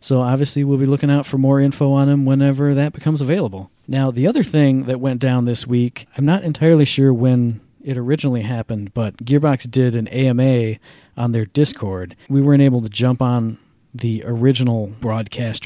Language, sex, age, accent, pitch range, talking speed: English, male, 40-59, American, 115-140 Hz, 190 wpm